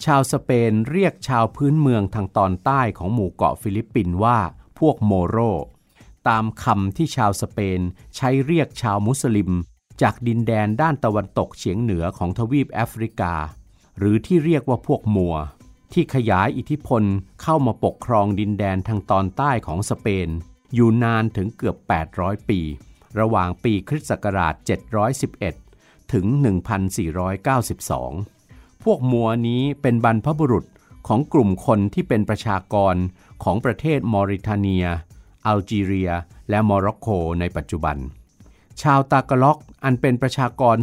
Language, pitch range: Thai, 95-125 Hz